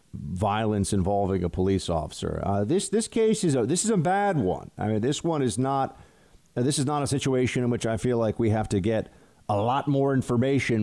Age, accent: 40-59, American